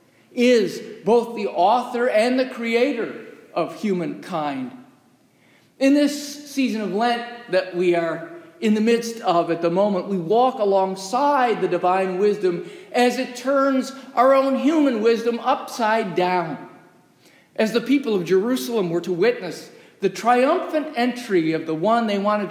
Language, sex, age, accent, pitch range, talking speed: English, male, 50-69, American, 210-280 Hz, 145 wpm